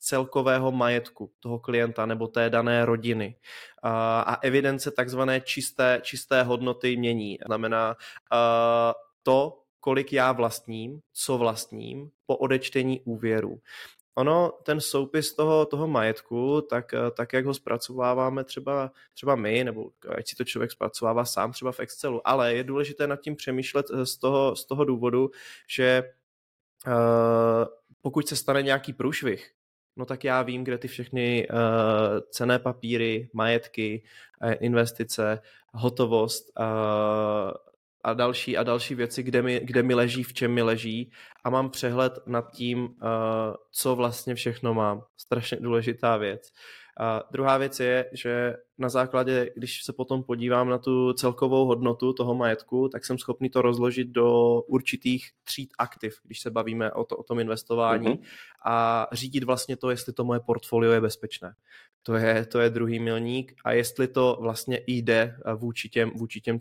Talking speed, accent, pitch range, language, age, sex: 140 wpm, native, 115-130 Hz, Czech, 20-39, male